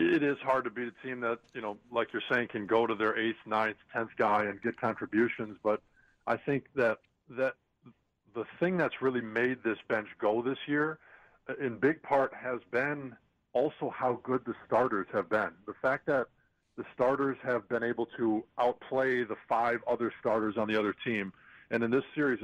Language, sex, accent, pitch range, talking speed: English, male, American, 110-130 Hz, 195 wpm